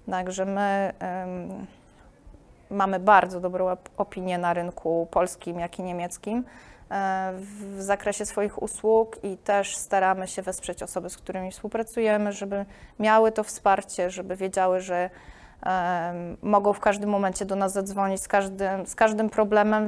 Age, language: 20-39, Polish